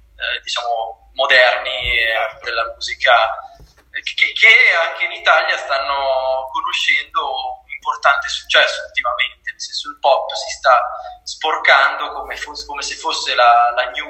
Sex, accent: male, native